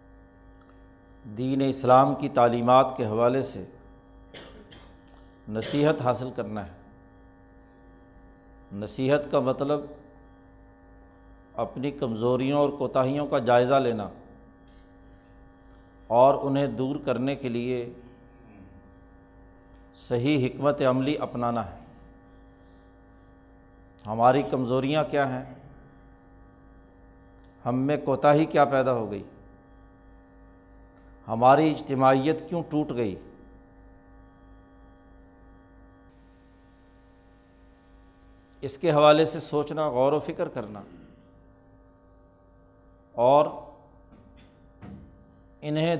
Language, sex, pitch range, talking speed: Urdu, male, 90-135 Hz, 75 wpm